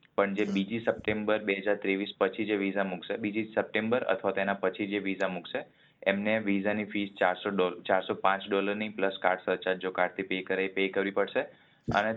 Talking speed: 185 wpm